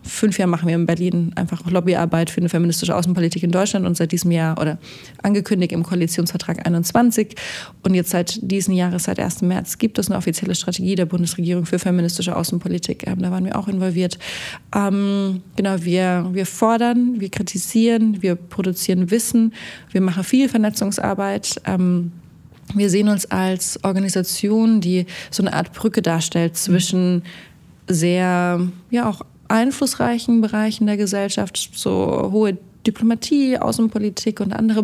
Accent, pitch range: German, 175-205 Hz